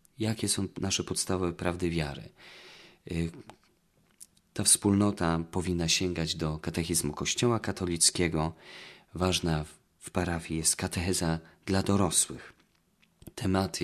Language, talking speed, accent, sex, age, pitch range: Polish, 95 wpm, native, male, 40-59, 80-105 Hz